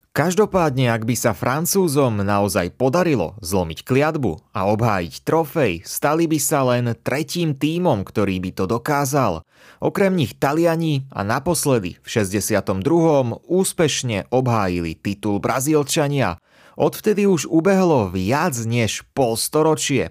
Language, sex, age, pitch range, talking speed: Slovak, male, 30-49, 105-160 Hz, 120 wpm